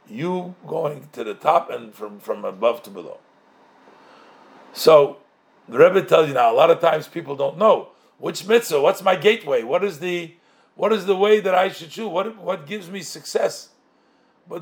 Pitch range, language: 155-210 Hz, English